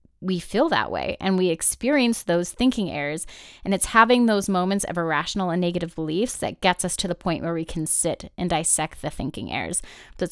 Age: 20-39